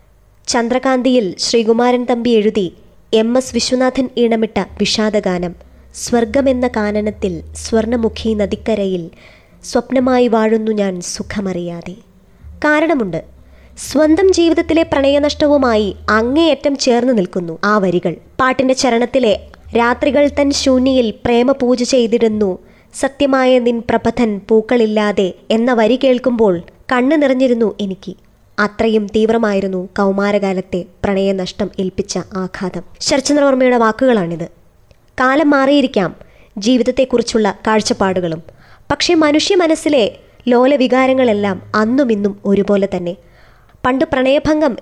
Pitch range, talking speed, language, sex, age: 195-260 Hz, 85 wpm, Malayalam, male, 20-39